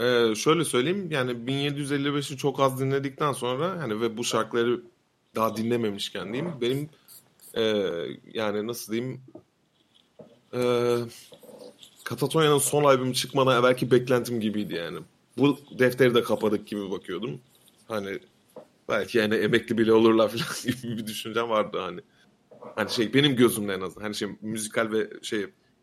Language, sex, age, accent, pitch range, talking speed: Turkish, male, 30-49, native, 110-140 Hz, 135 wpm